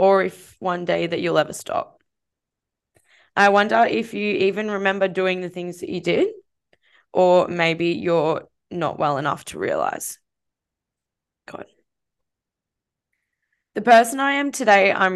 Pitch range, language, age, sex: 175-210 Hz, English, 10-29, female